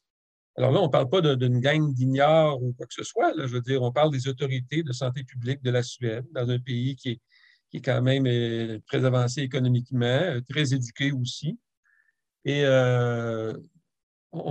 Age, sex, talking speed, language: 50-69, male, 185 wpm, French